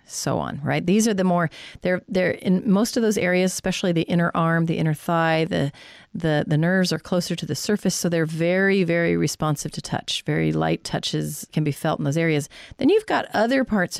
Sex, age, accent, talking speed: female, 40-59, American, 220 wpm